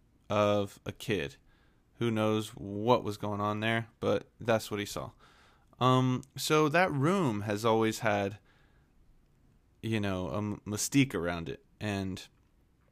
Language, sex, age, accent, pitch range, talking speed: English, male, 20-39, American, 105-145 Hz, 135 wpm